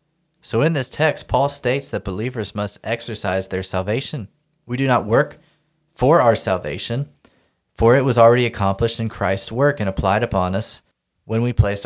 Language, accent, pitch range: English, American, 100-125 Hz